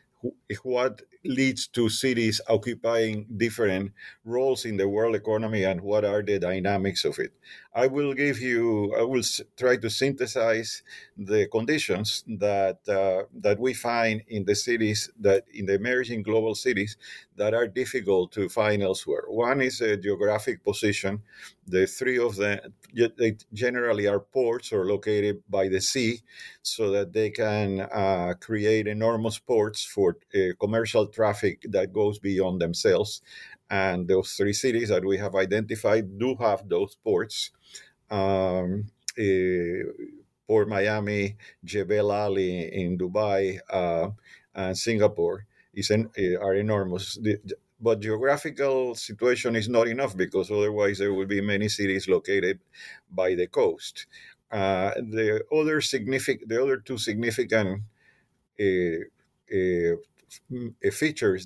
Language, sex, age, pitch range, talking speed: English, male, 50-69, 100-125 Hz, 135 wpm